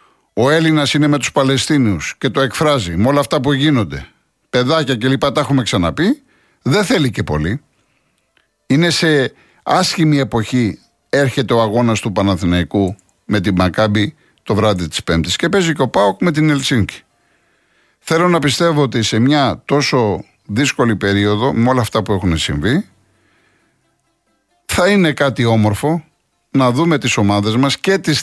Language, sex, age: Greek, male, 50-69